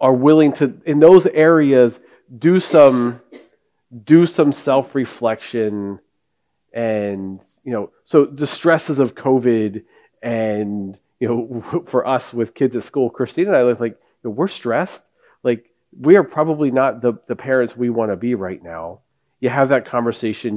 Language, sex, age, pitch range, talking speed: English, male, 40-59, 110-145 Hz, 155 wpm